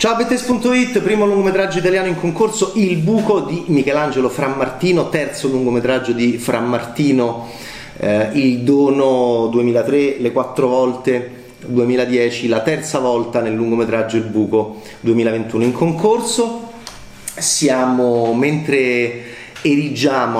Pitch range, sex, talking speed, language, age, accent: 110-130 Hz, male, 110 wpm, Italian, 30-49, native